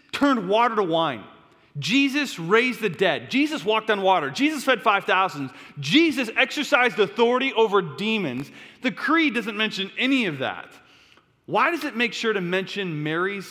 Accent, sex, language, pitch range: American, male, English, 145-205 Hz